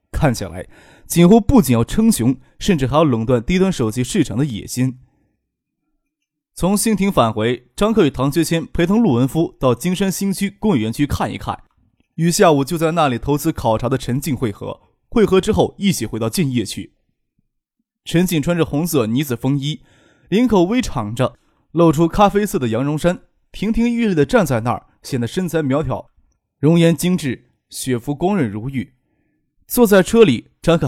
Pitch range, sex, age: 125-175 Hz, male, 20-39